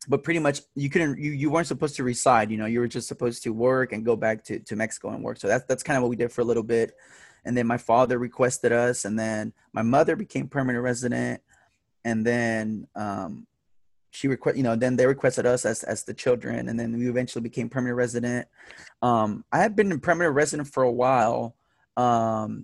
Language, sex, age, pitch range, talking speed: English, male, 20-39, 120-135 Hz, 225 wpm